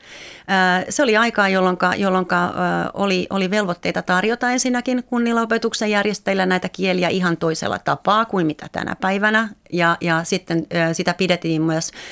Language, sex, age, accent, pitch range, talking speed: Finnish, female, 30-49, native, 165-195 Hz, 140 wpm